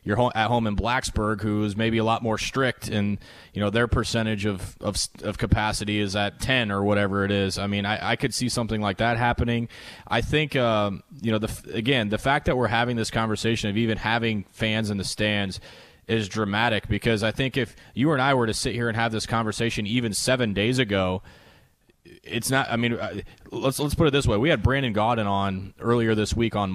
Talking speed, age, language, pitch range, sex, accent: 225 wpm, 20-39, English, 105-120 Hz, male, American